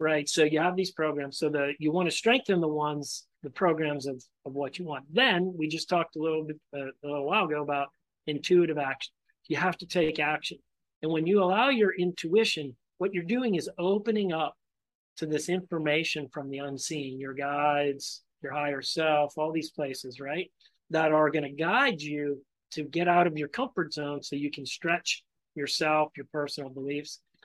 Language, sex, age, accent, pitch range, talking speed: English, male, 40-59, American, 145-175 Hz, 195 wpm